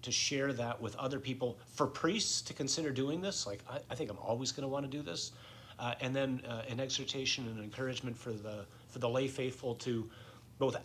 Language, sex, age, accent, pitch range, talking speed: English, male, 40-59, American, 110-130 Hz, 215 wpm